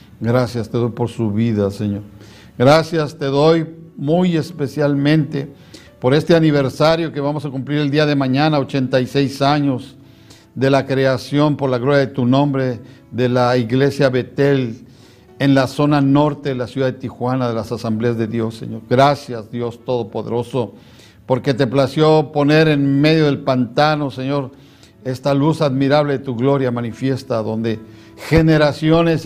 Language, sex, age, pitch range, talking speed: Spanish, male, 60-79, 125-145 Hz, 150 wpm